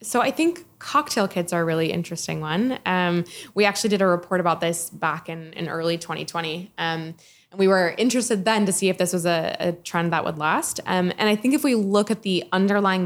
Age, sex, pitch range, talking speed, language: 20-39, female, 175-210 Hz, 230 wpm, English